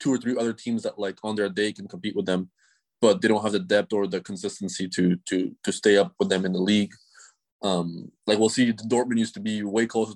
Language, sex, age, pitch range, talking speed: English, male, 20-39, 95-115 Hz, 255 wpm